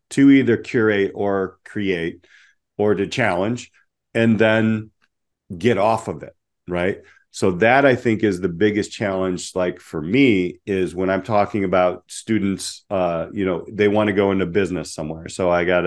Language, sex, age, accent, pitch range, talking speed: English, male, 40-59, American, 90-110 Hz, 170 wpm